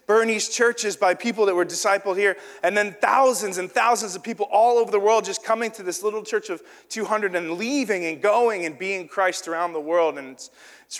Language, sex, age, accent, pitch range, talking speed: English, male, 30-49, American, 165-225 Hz, 220 wpm